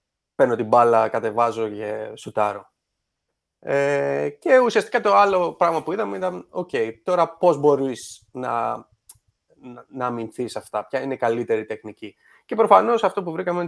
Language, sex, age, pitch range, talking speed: Greek, male, 30-49, 115-165 Hz, 150 wpm